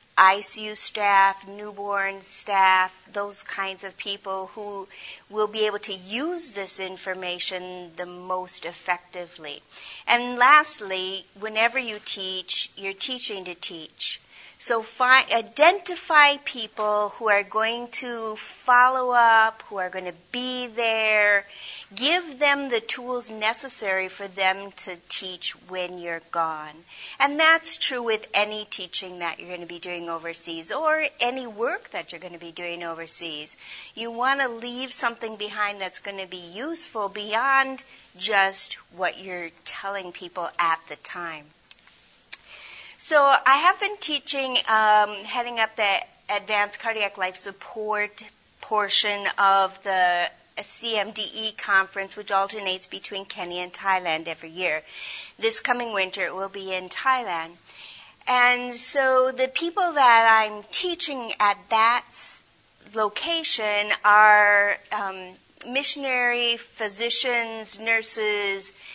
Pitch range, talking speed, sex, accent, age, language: 185-240 Hz, 130 wpm, female, American, 50-69, English